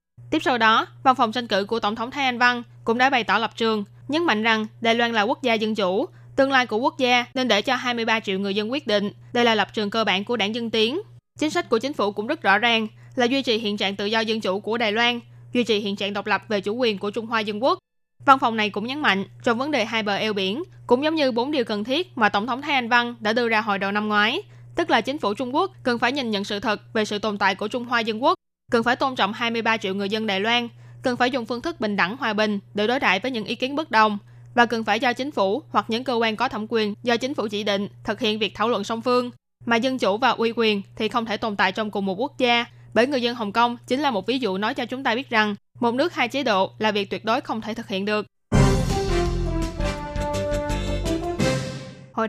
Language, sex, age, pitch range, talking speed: Vietnamese, female, 20-39, 205-245 Hz, 280 wpm